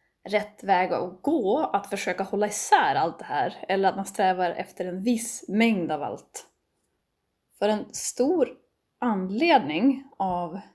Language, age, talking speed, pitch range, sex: Swedish, 10-29, 145 wpm, 175-240 Hz, female